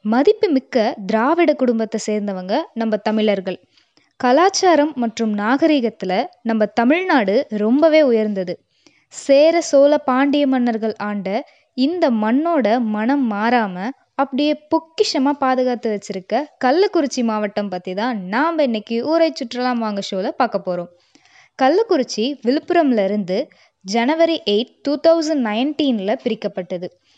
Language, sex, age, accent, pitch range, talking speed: Tamil, female, 20-39, native, 215-290 Hz, 100 wpm